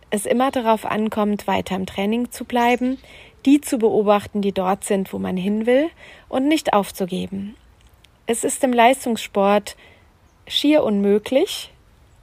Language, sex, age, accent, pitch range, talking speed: German, female, 40-59, German, 195-230 Hz, 135 wpm